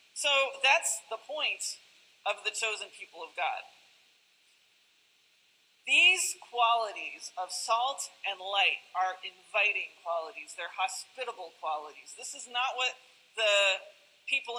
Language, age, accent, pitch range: English, 40-59, American, 200-250 Hz